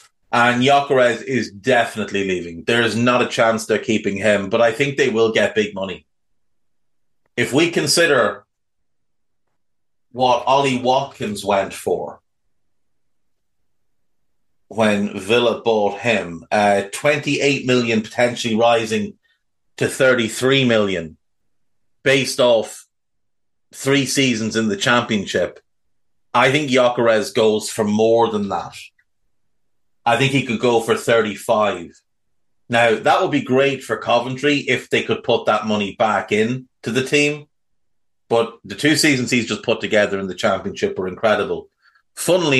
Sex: male